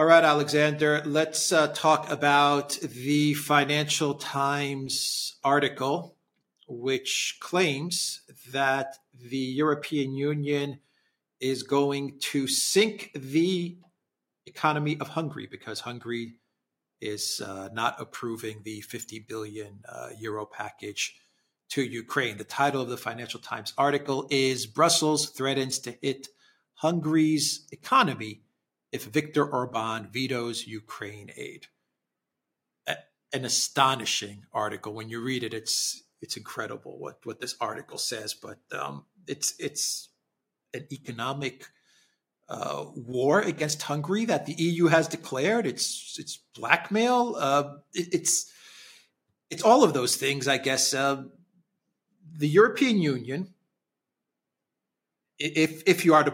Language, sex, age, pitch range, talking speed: English, male, 40-59, 125-155 Hz, 120 wpm